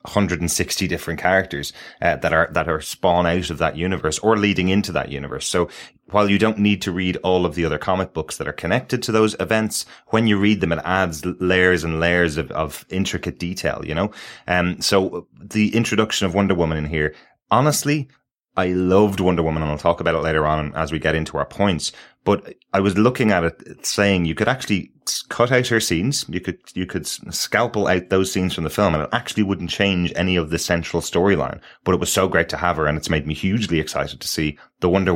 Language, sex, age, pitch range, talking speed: English, male, 30-49, 80-100 Hz, 225 wpm